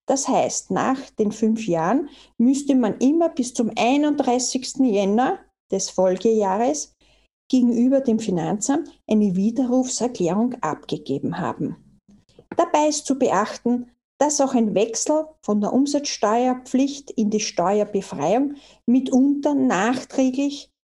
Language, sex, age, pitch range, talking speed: German, female, 50-69, 215-275 Hz, 110 wpm